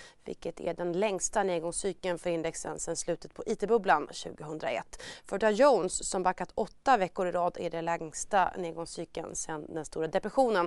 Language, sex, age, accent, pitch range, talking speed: Swedish, female, 30-49, native, 175-220 Hz, 165 wpm